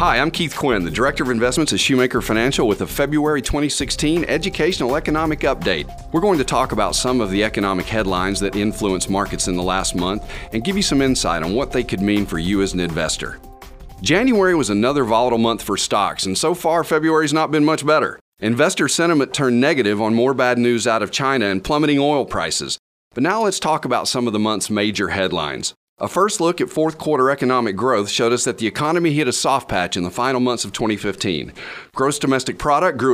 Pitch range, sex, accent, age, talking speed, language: 105-155 Hz, male, American, 40-59, 215 wpm, English